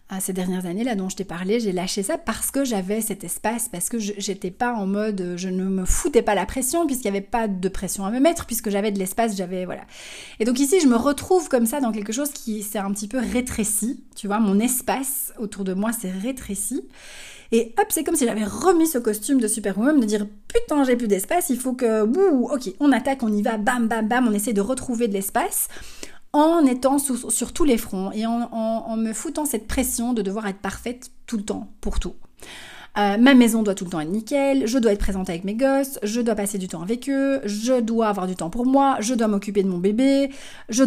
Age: 30-49